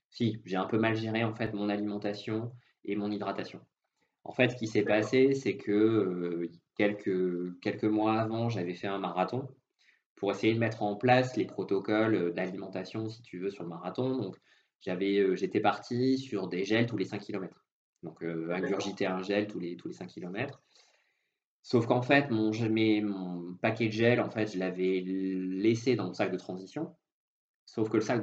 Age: 20-39